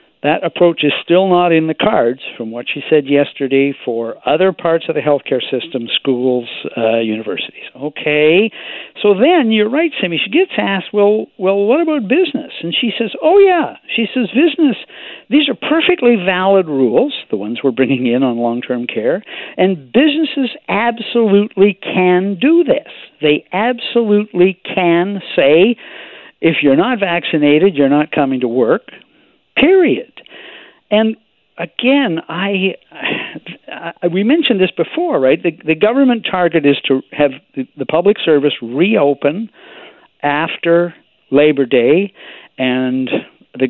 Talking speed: 140 wpm